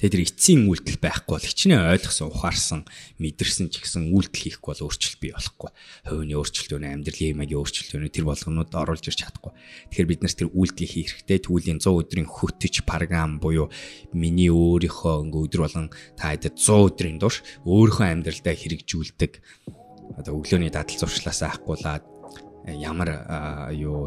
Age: 20-39